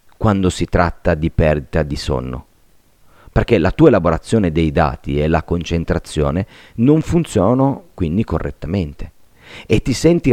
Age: 40-59